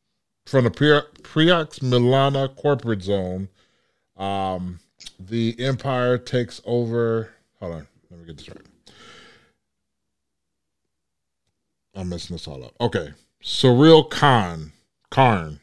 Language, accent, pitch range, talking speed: English, American, 100-130 Hz, 105 wpm